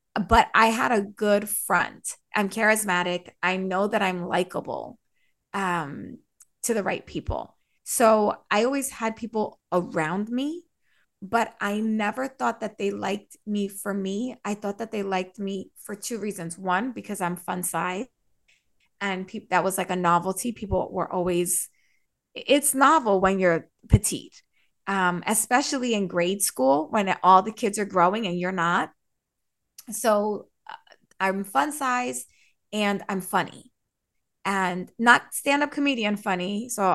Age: 20-39